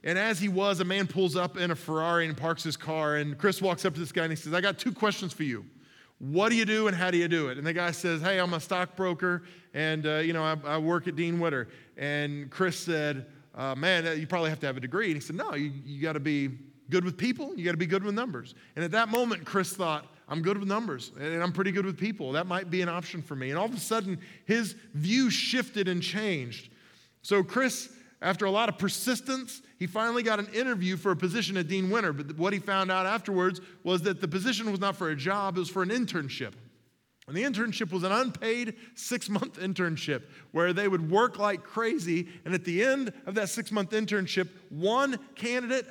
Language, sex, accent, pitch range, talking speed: English, male, American, 165-220 Hz, 240 wpm